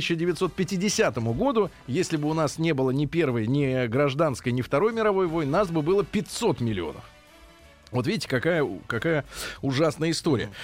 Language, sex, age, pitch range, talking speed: Russian, male, 20-39, 125-165 Hz, 150 wpm